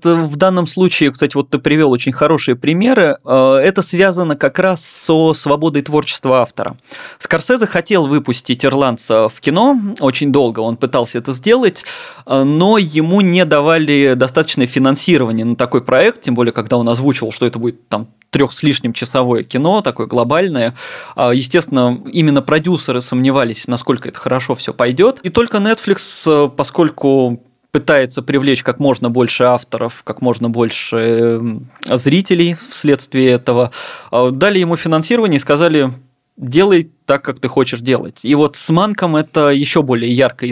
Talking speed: 145 wpm